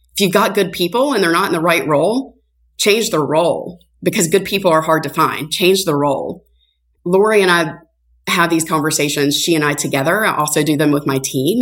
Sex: female